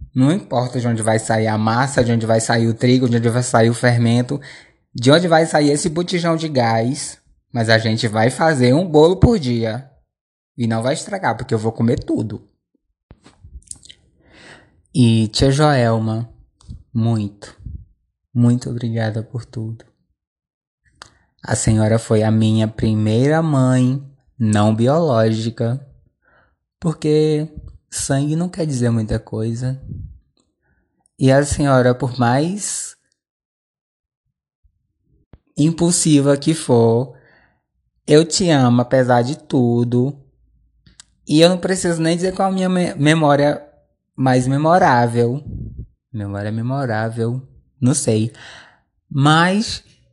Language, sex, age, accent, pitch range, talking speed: Portuguese, male, 20-39, Brazilian, 115-150 Hz, 125 wpm